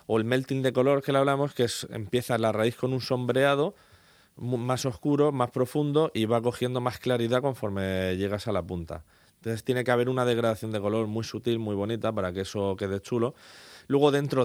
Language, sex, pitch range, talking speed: Spanish, male, 95-120 Hz, 205 wpm